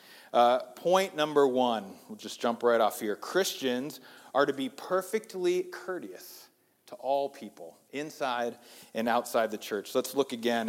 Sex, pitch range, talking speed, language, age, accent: male, 130-180 Hz, 150 wpm, English, 40-59, American